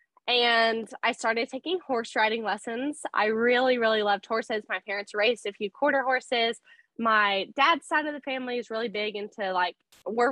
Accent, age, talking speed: American, 10-29, 180 wpm